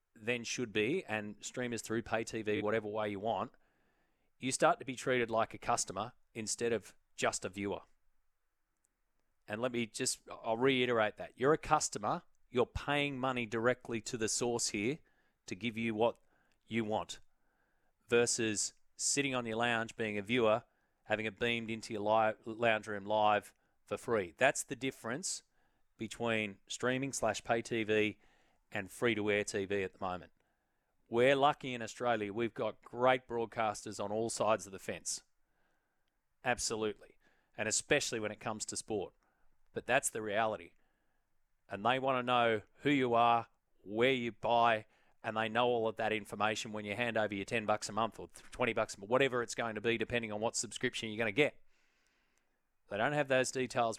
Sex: male